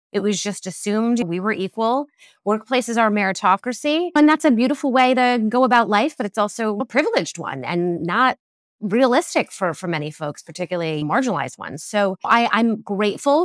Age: 20-39